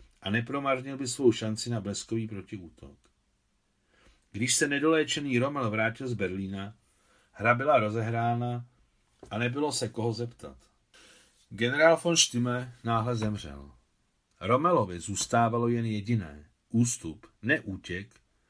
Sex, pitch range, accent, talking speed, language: male, 100-125 Hz, native, 115 wpm, Czech